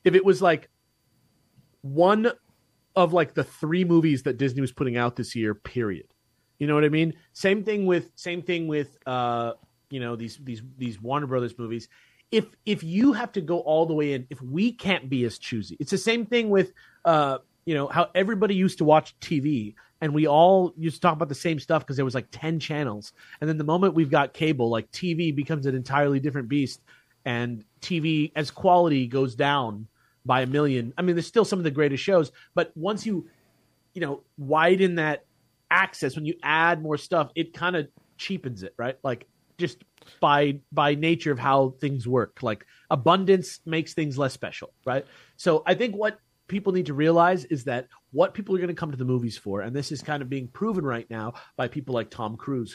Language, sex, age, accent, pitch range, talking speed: English, male, 30-49, American, 130-175 Hz, 210 wpm